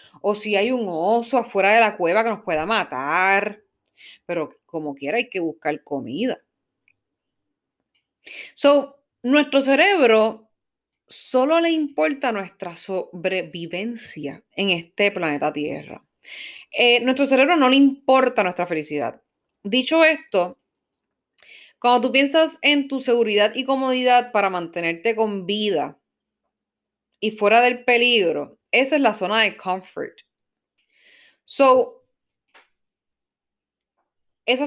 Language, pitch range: Spanish, 180-260 Hz